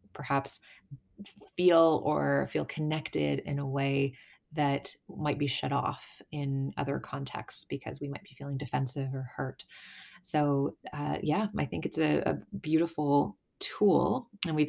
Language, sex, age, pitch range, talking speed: English, female, 20-39, 140-155 Hz, 145 wpm